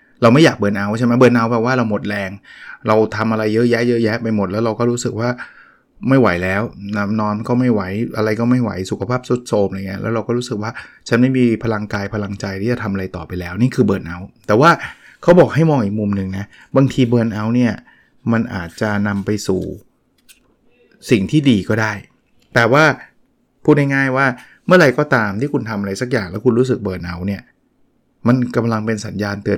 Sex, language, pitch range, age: male, Thai, 100-125 Hz, 20-39